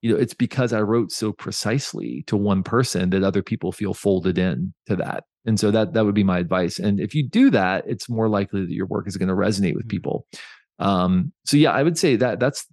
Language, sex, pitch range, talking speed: English, male, 95-115 Hz, 245 wpm